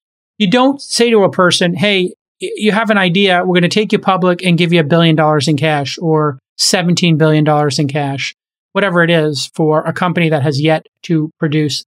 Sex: male